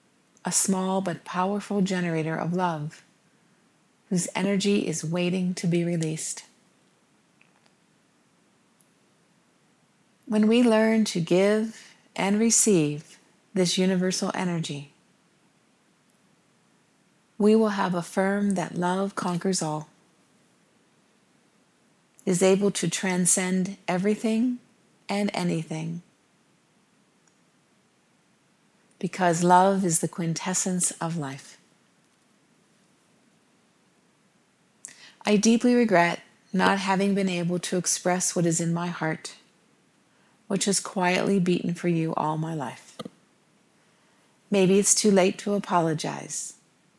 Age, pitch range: 40-59, 170-200 Hz